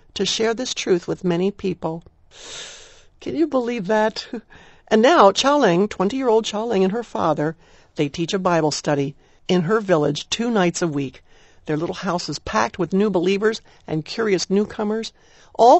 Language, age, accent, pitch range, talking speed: English, 60-79, American, 170-220 Hz, 165 wpm